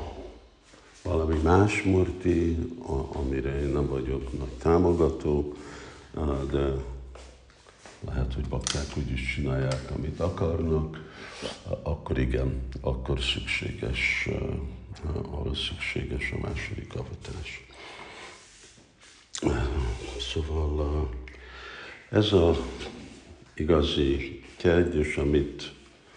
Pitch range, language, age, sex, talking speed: 70-85 Hz, Hungarian, 60-79, male, 75 wpm